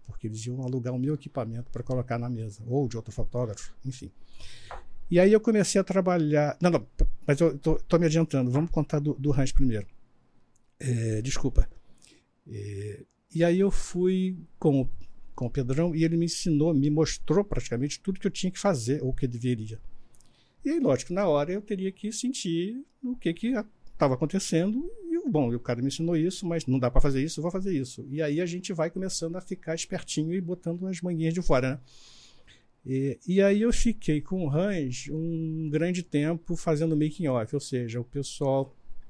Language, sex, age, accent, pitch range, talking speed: Portuguese, male, 60-79, Brazilian, 125-170 Hz, 195 wpm